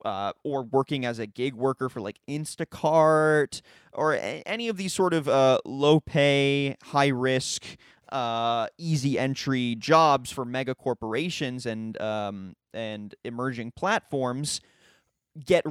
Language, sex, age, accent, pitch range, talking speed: English, male, 20-39, American, 120-150 Hz, 130 wpm